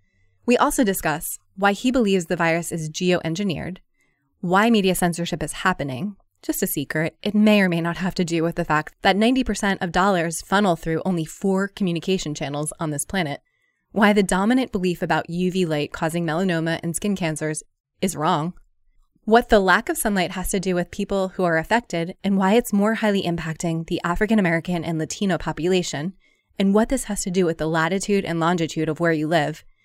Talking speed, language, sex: 190 wpm, English, female